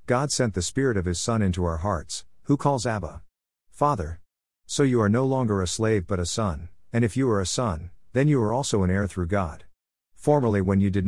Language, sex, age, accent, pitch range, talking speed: English, male, 50-69, American, 90-115 Hz, 225 wpm